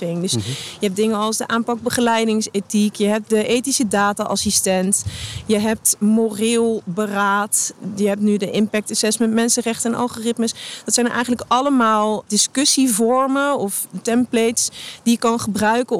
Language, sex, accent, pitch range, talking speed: Dutch, female, Dutch, 210-245 Hz, 145 wpm